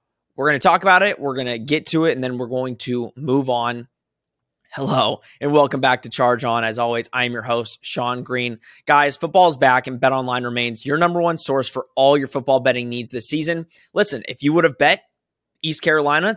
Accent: American